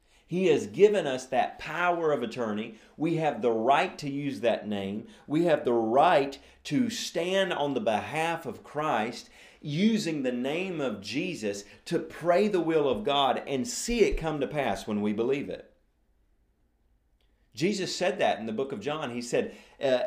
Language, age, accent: English, 40-59, American